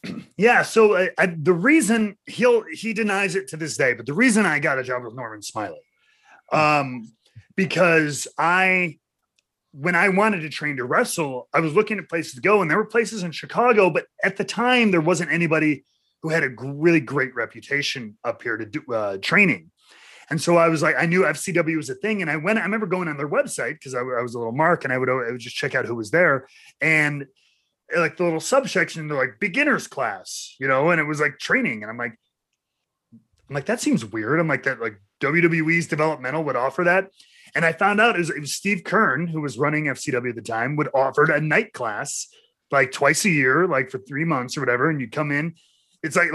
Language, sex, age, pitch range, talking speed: English, male, 30-49, 140-200 Hz, 225 wpm